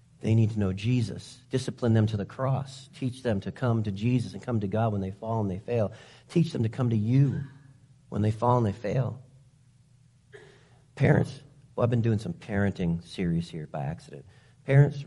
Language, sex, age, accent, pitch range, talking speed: English, male, 40-59, American, 120-180 Hz, 200 wpm